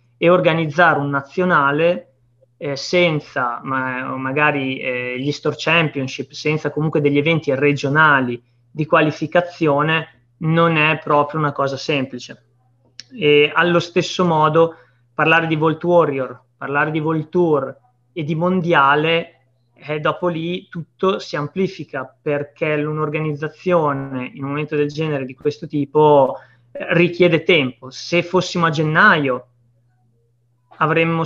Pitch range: 135-170 Hz